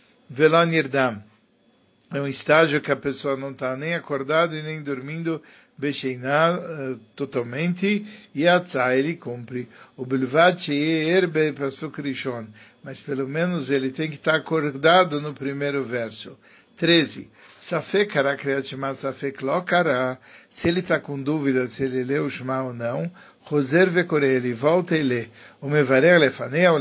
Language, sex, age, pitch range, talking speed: Malay, male, 60-79, 135-170 Hz, 140 wpm